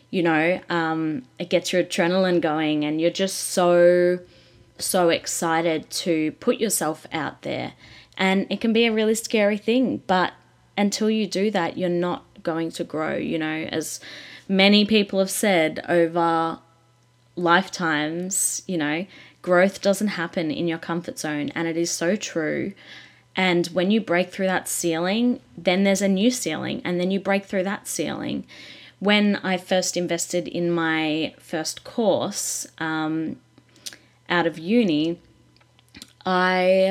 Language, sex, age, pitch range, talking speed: English, female, 10-29, 160-190 Hz, 150 wpm